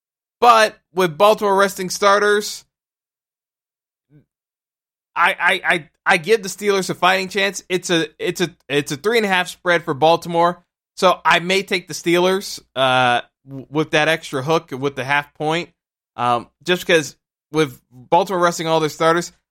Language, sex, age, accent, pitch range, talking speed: English, male, 20-39, American, 145-180 Hz, 165 wpm